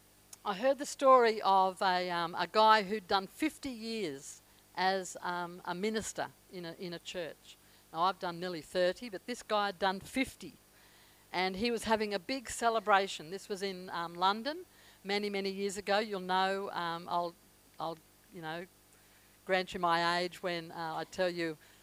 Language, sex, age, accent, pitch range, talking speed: English, female, 50-69, Australian, 165-210 Hz, 180 wpm